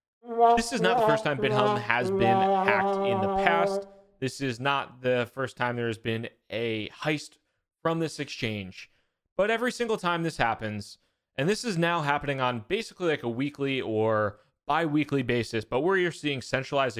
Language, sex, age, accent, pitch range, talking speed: English, male, 20-39, American, 115-150 Hz, 185 wpm